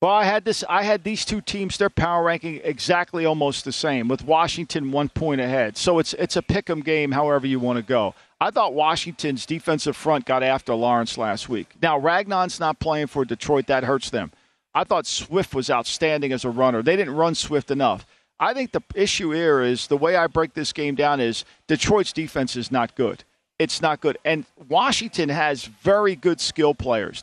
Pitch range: 145-190 Hz